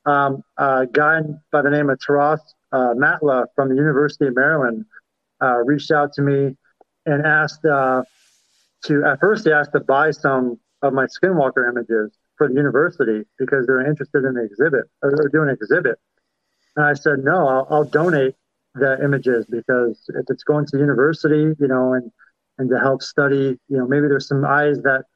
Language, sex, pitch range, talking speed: English, male, 130-150 Hz, 185 wpm